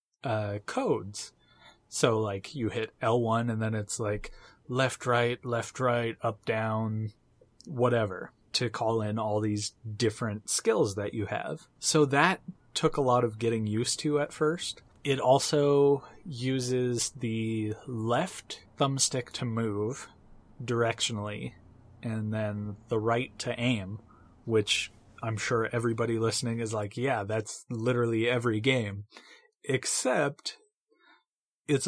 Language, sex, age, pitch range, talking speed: English, male, 20-39, 110-140 Hz, 130 wpm